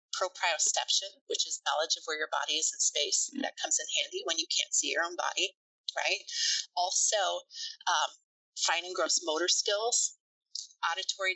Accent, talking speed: American, 165 wpm